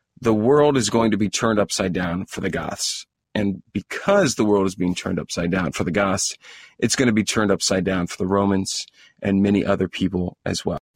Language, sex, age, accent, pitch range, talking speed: English, male, 40-59, American, 95-120 Hz, 220 wpm